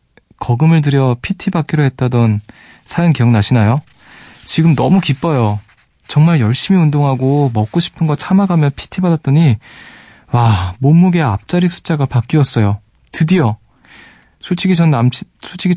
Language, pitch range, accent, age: Korean, 115-150 Hz, native, 20-39